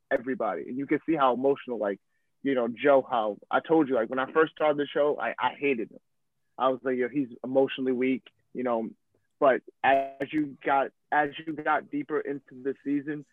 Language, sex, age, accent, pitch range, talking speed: English, male, 30-49, American, 130-150 Hz, 205 wpm